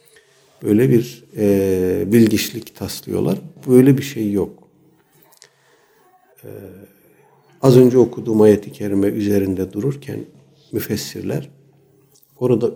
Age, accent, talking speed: 60-79, native, 90 wpm